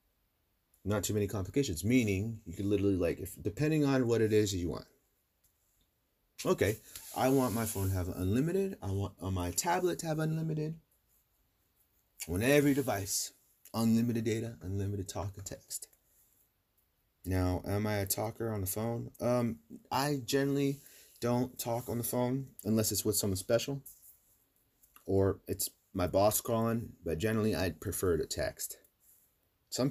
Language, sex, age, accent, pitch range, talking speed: English, male, 30-49, American, 85-115 Hz, 150 wpm